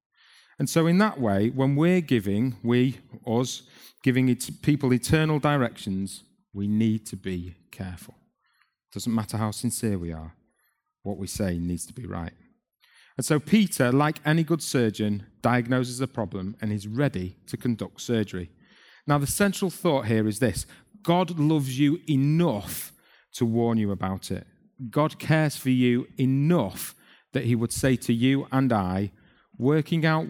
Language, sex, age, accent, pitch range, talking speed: English, male, 40-59, British, 100-140 Hz, 160 wpm